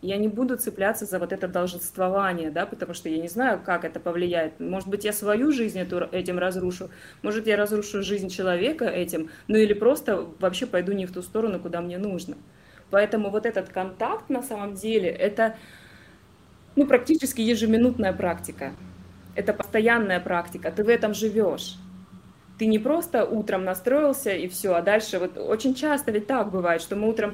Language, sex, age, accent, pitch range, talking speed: Russian, female, 20-39, native, 180-225 Hz, 175 wpm